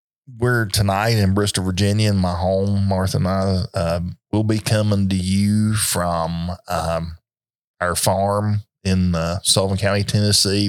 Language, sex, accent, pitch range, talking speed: English, male, American, 90-100 Hz, 145 wpm